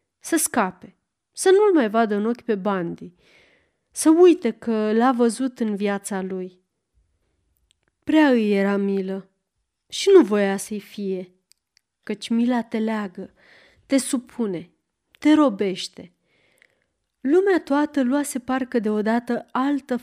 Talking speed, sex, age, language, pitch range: 125 wpm, female, 30-49, Romanian, 195-255 Hz